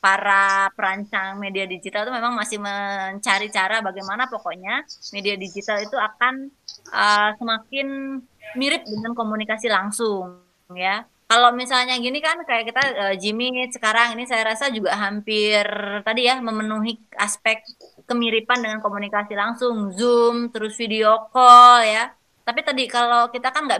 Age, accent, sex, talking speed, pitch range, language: 20-39, native, female, 140 wpm, 205-245 Hz, Indonesian